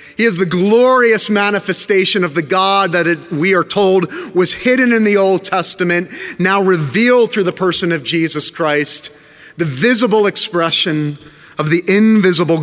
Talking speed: 155 wpm